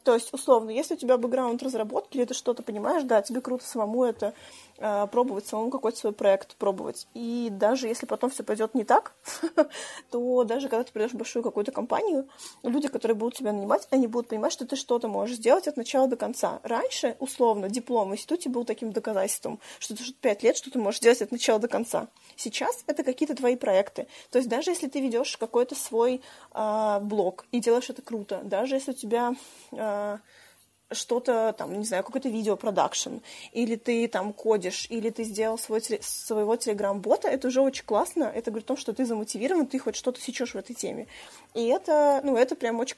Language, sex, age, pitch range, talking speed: Russian, female, 20-39, 220-265 Hz, 195 wpm